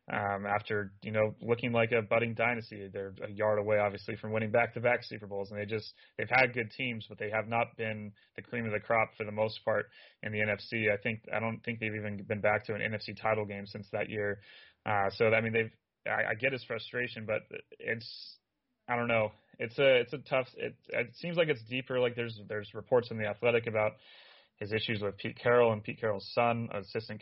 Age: 30-49